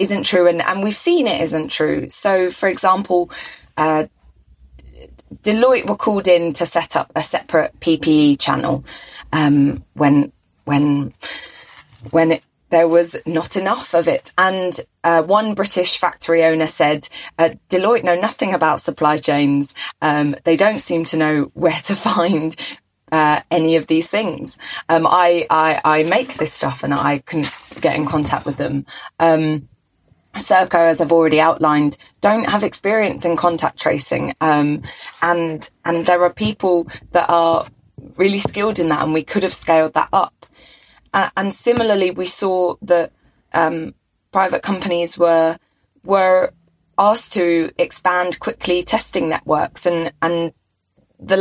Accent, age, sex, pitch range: British, 20-39, female, 155-185 Hz